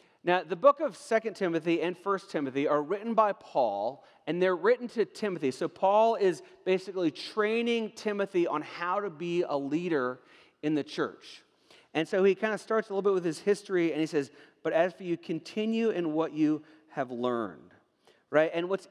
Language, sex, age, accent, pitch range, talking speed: English, male, 40-59, American, 150-205 Hz, 195 wpm